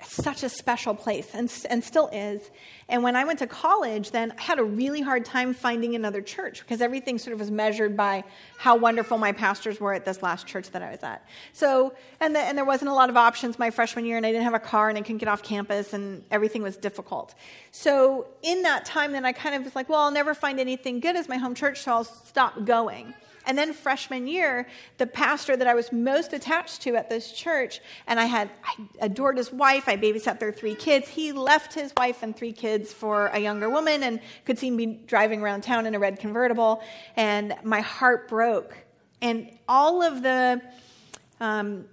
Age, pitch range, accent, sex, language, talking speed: 40-59, 215-260 Hz, American, female, English, 220 wpm